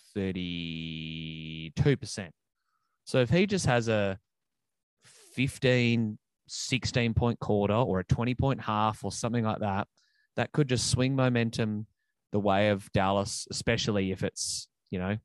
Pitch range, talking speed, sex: 100-120 Hz, 125 wpm, male